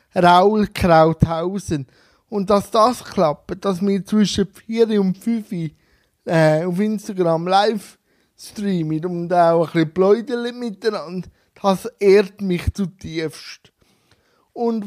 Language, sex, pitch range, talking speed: German, male, 180-230 Hz, 115 wpm